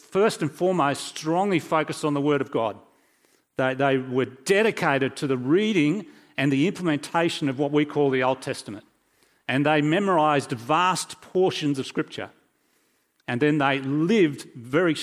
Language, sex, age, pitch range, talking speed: English, male, 40-59, 130-170 Hz, 155 wpm